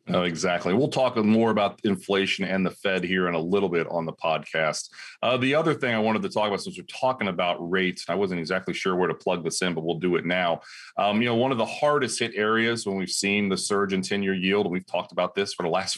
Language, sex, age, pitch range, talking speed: English, male, 30-49, 90-115 Hz, 270 wpm